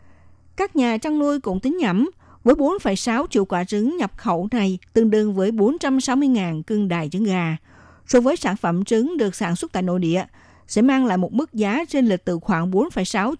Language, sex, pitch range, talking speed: Vietnamese, female, 185-250 Hz, 200 wpm